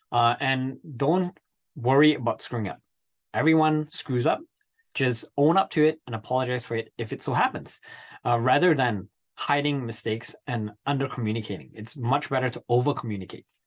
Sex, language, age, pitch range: male, English, 20-39, 115-150 Hz